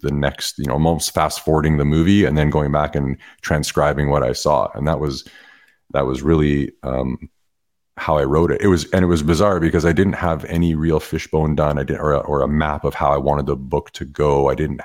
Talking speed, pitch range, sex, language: 245 wpm, 70-80 Hz, male, English